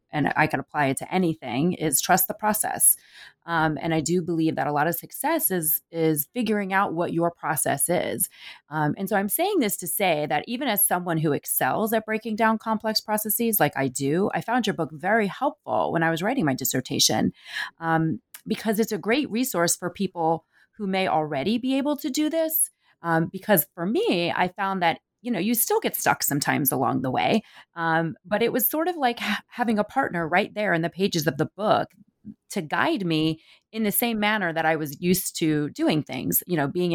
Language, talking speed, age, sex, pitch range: English, 215 wpm, 30-49, female, 155-215 Hz